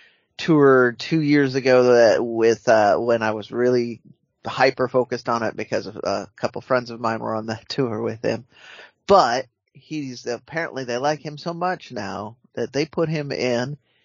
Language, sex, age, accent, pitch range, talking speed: English, male, 30-49, American, 110-135 Hz, 175 wpm